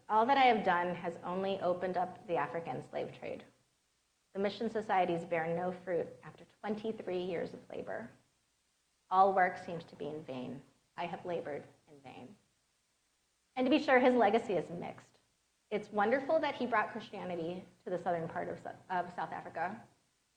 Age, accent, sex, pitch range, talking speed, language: 30-49, American, female, 180-220 Hz, 170 wpm, English